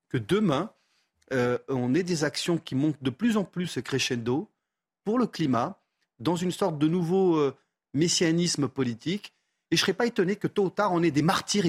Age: 30-49